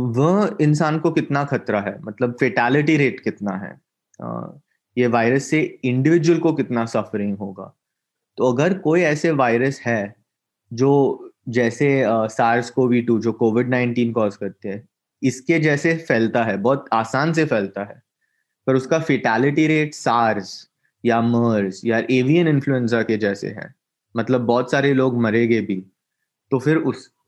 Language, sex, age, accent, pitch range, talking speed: Hindi, male, 20-39, native, 115-145 Hz, 150 wpm